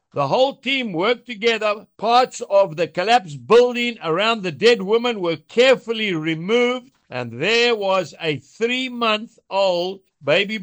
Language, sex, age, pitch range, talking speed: English, male, 60-79, 180-240 Hz, 130 wpm